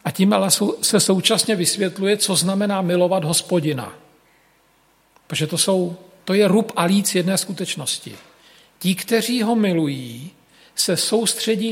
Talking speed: 135 wpm